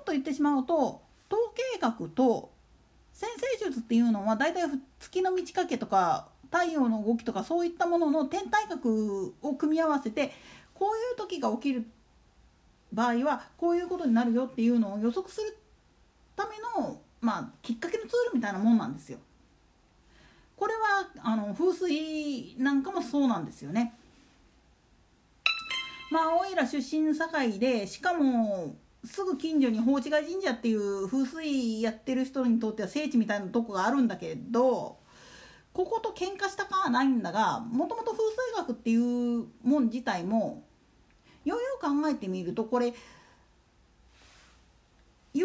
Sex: female